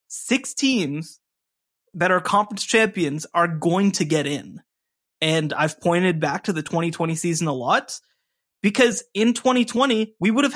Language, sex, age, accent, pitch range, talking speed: English, male, 20-39, American, 155-205 Hz, 165 wpm